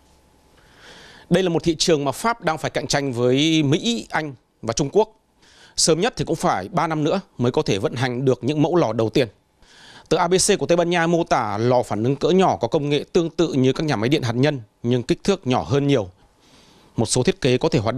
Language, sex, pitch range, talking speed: Vietnamese, male, 125-165 Hz, 245 wpm